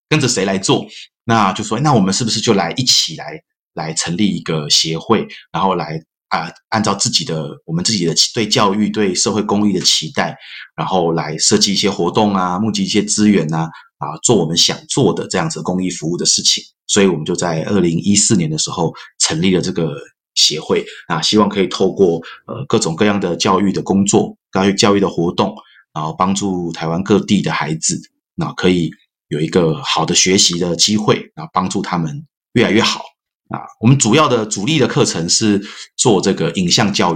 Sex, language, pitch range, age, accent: male, Chinese, 90-110 Hz, 30-49, native